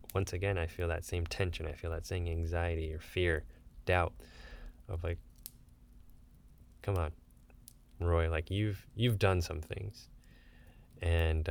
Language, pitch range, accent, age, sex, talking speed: English, 80-95 Hz, American, 20-39, male, 140 wpm